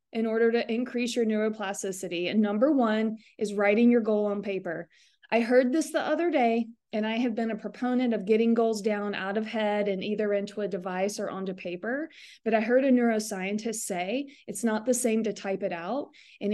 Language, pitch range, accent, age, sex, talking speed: English, 205-250 Hz, American, 20-39, female, 205 wpm